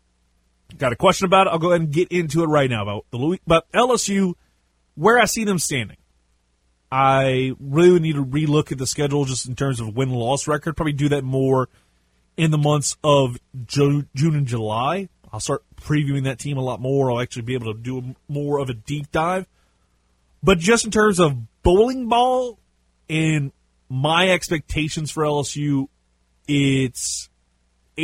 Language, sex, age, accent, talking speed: English, male, 30-49, American, 175 wpm